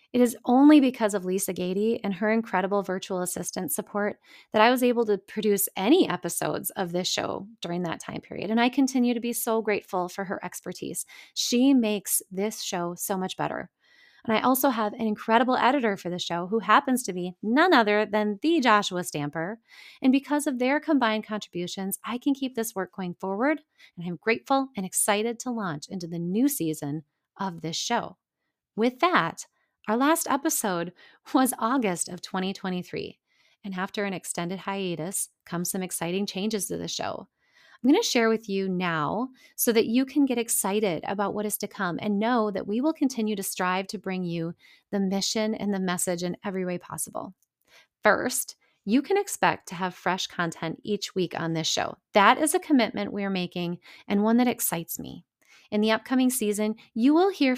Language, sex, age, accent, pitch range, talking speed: English, female, 30-49, American, 185-245 Hz, 190 wpm